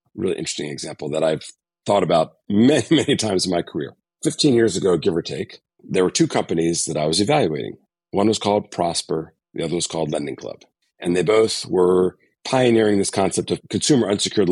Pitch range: 90-110 Hz